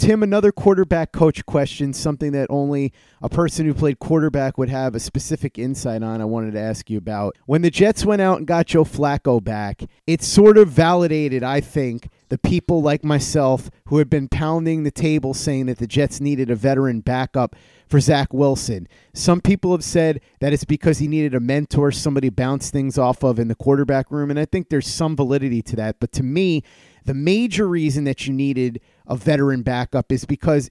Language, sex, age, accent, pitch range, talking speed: English, male, 30-49, American, 130-160 Hz, 205 wpm